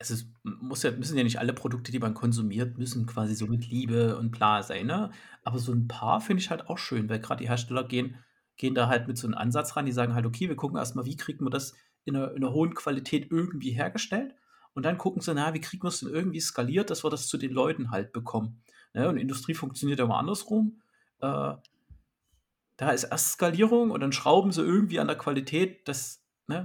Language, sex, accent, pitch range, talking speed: German, male, German, 120-160 Hz, 235 wpm